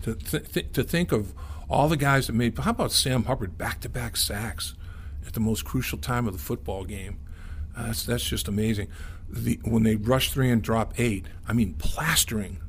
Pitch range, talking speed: 85-115 Hz, 185 wpm